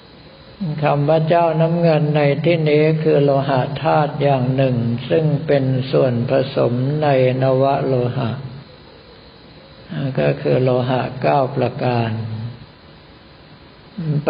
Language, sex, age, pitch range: Thai, male, 60-79, 130-150 Hz